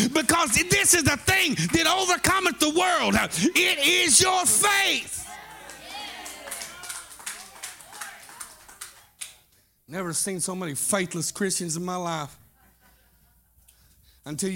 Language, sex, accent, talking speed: English, male, American, 95 wpm